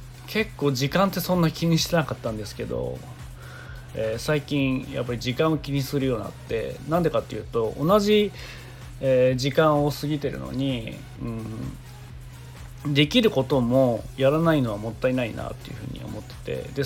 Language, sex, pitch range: Japanese, male, 120-155 Hz